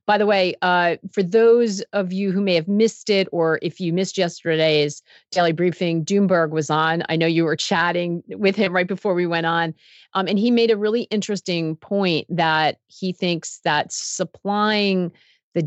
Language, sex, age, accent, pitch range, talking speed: English, female, 40-59, American, 155-190 Hz, 190 wpm